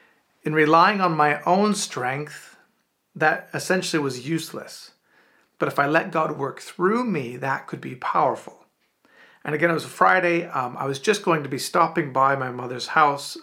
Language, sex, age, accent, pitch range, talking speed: English, male, 40-59, American, 145-175 Hz, 180 wpm